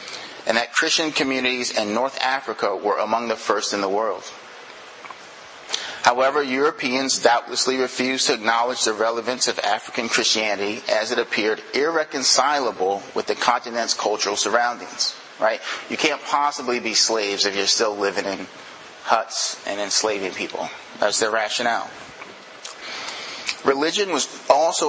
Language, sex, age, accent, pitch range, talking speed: English, male, 30-49, American, 110-125 Hz, 130 wpm